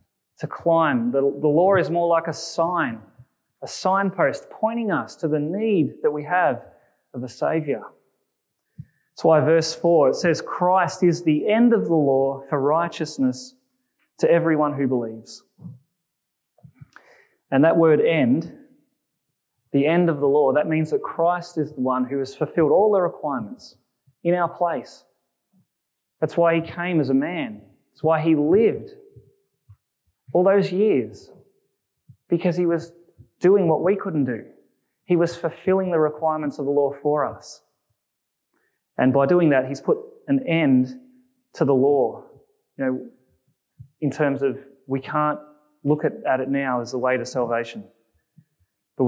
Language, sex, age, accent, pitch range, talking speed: English, male, 30-49, Australian, 135-180 Hz, 155 wpm